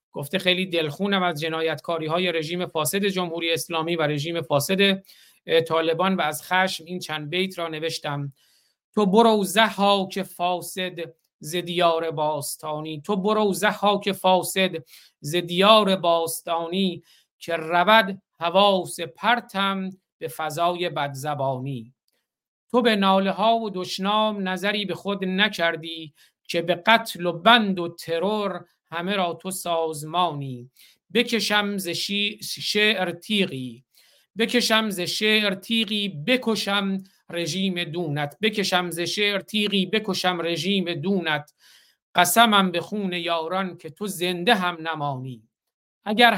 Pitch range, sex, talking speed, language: 165-200 Hz, male, 120 wpm, Persian